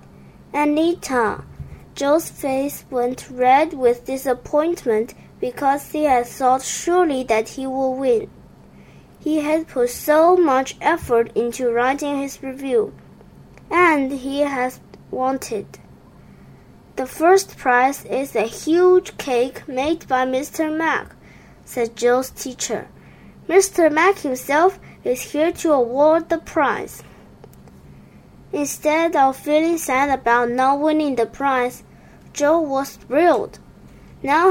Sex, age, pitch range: female, 20-39, 250-320 Hz